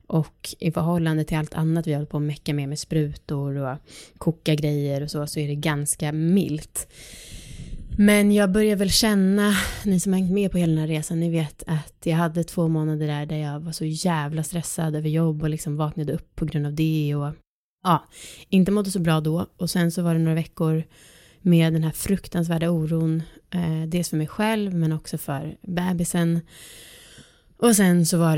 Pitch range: 155-175 Hz